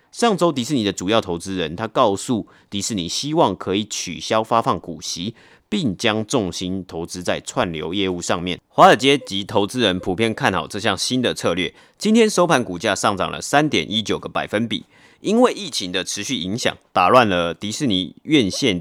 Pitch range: 95-130 Hz